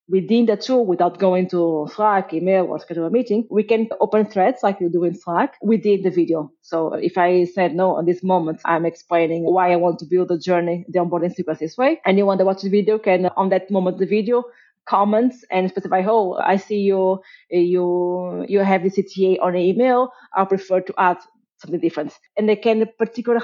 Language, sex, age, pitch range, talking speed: English, female, 30-49, 180-220 Hz, 215 wpm